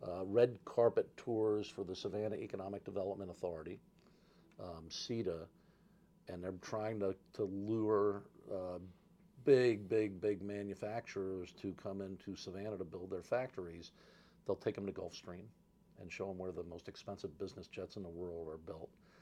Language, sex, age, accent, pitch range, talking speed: English, male, 50-69, American, 90-100 Hz, 155 wpm